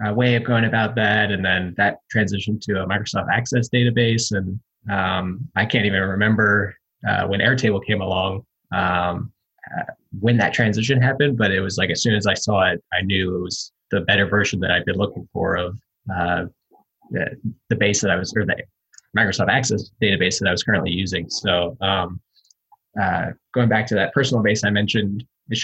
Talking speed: 195 wpm